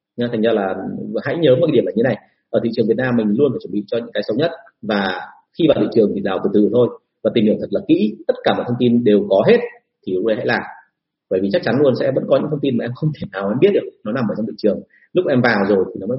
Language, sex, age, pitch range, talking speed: Vietnamese, male, 30-49, 120-175 Hz, 320 wpm